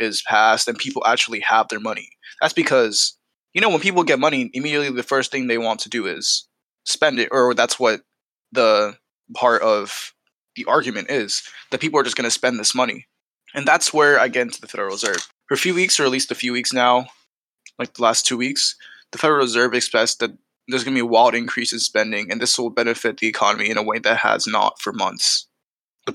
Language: English